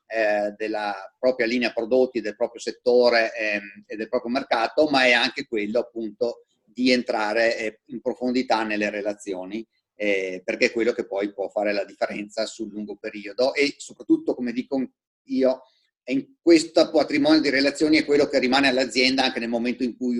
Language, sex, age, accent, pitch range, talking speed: Italian, male, 30-49, native, 110-130 Hz, 170 wpm